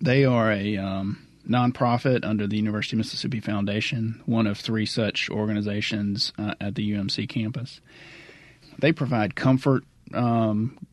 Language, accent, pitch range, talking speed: English, American, 105-125 Hz, 135 wpm